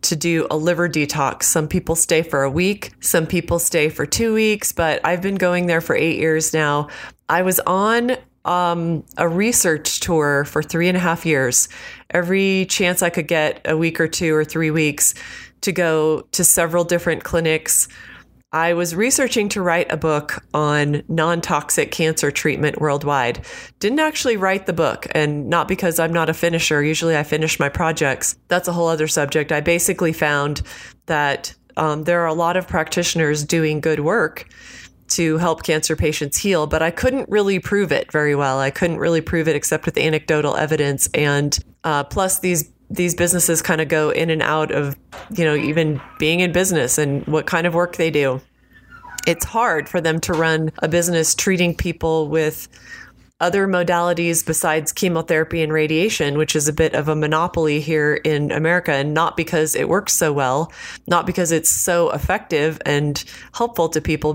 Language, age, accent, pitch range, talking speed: English, 30-49, American, 155-175 Hz, 185 wpm